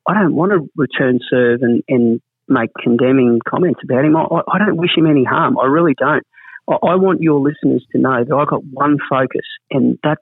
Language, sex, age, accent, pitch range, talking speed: English, male, 40-59, Australian, 130-155 Hz, 215 wpm